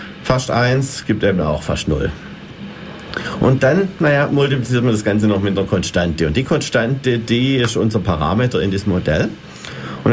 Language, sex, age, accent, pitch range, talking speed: German, male, 50-69, German, 90-110 Hz, 170 wpm